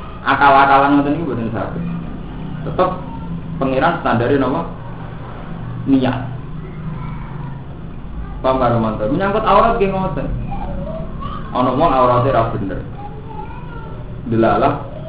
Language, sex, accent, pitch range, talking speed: Indonesian, male, native, 125-150 Hz, 90 wpm